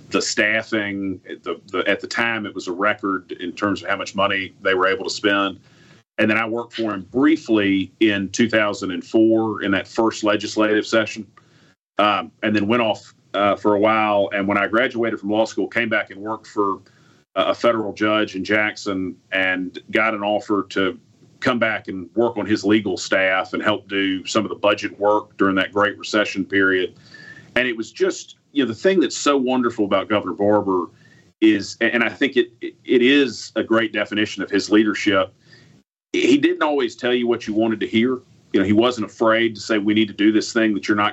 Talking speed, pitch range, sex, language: 205 wpm, 100-120 Hz, male, English